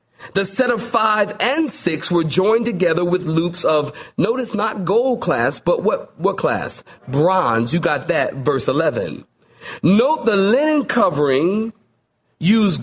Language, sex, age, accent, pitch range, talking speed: English, male, 40-59, American, 160-225 Hz, 145 wpm